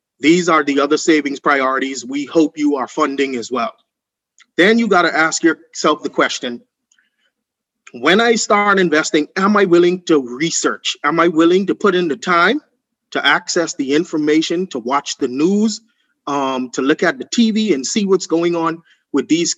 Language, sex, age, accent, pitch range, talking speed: English, male, 30-49, American, 140-180 Hz, 180 wpm